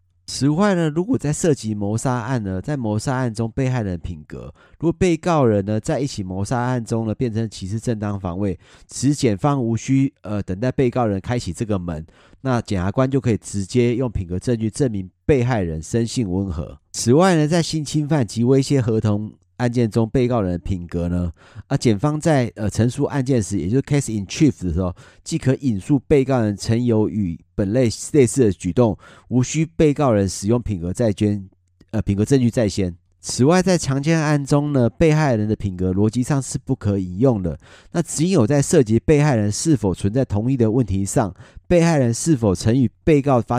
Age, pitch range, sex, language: 30-49, 100-135 Hz, male, Chinese